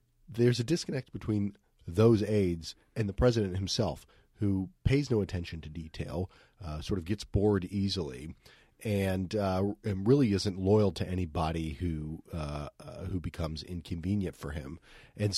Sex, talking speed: male, 155 wpm